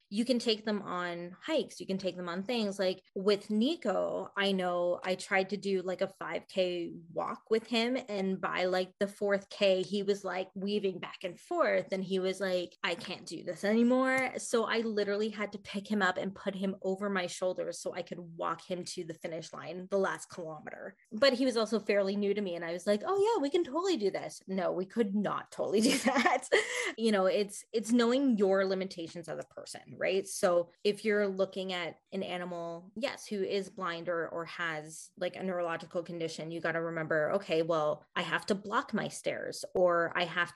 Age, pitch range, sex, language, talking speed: 20-39, 175-215 Hz, female, English, 215 wpm